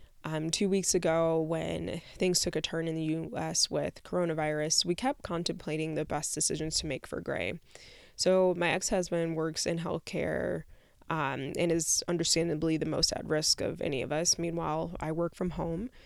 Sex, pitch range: female, 160-180 Hz